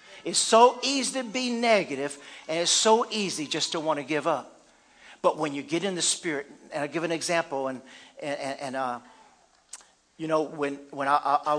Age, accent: 50-69, American